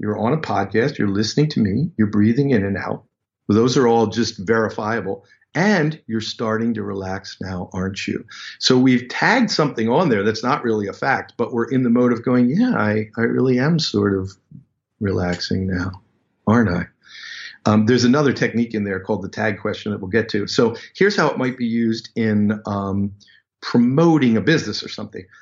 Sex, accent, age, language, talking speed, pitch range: male, American, 50-69, English, 195 wpm, 105-130 Hz